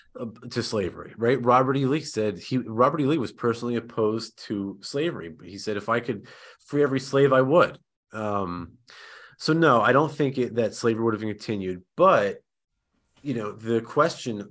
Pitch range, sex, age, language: 105-135 Hz, male, 30-49, English